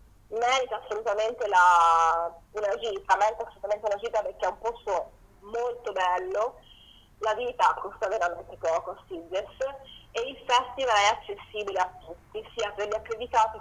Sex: female